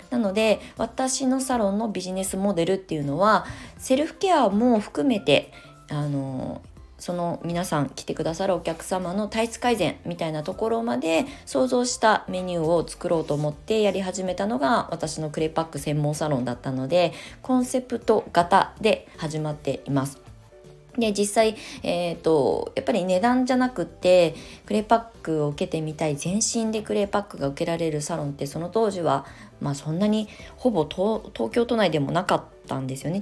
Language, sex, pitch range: Japanese, female, 145-215 Hz